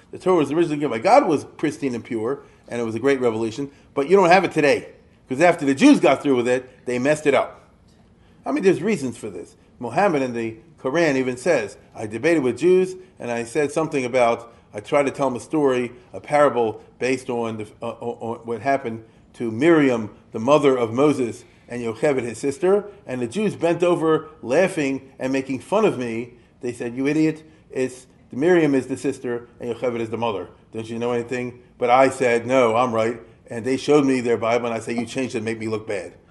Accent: American